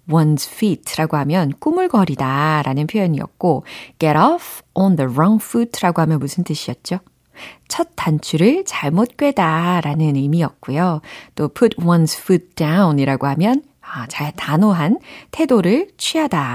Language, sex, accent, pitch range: Korean, female, native, 150-215 Hz